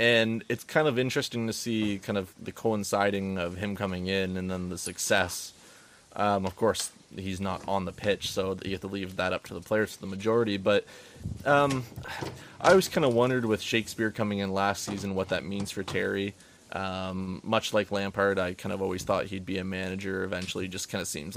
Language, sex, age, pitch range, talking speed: English, male, 20-39, 95-110 Hz, 210 wpm